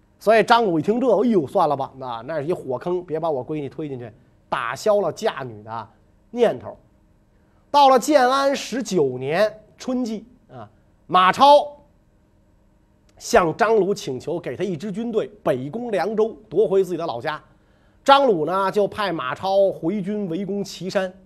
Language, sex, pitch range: Chinese, male, 155-235 Hz